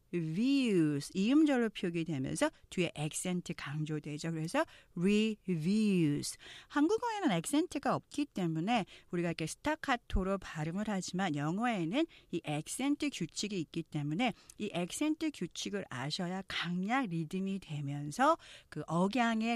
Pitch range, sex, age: 160-240 Hz, female, 40-59